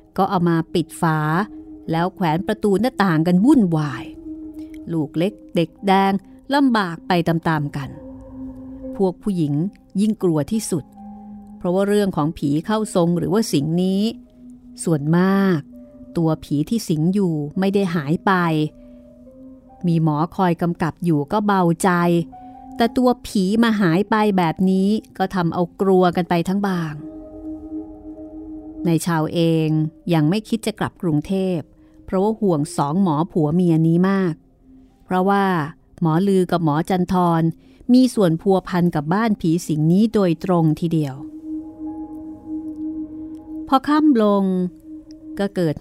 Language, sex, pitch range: Thai, female, 165-245 Hz